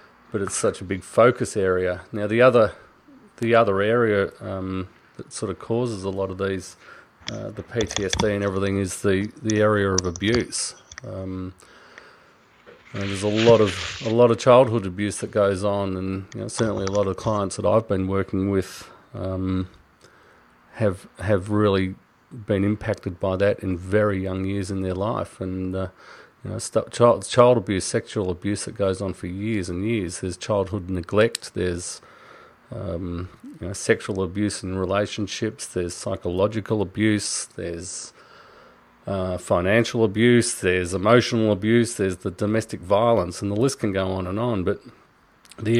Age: 40-59